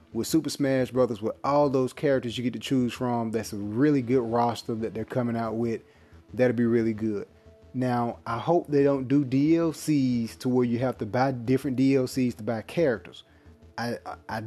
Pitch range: 110-130 Hz